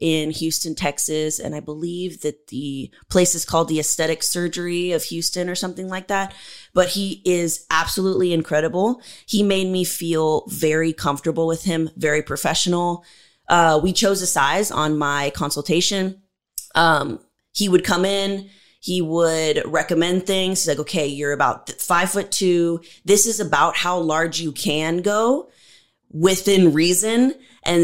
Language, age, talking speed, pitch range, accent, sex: English, 20-39, 155 wpm, 155-185 Hz, American, female